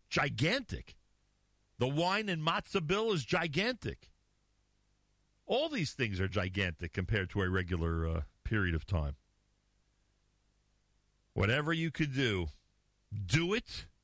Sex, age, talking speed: male, 50-69, 115 wpm